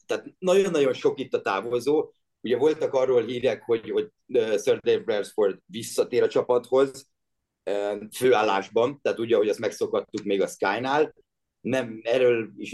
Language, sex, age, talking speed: Hungarian, male, 30-49, 140 wpm